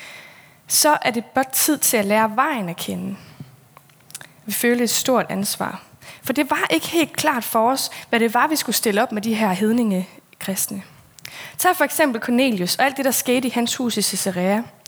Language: Danish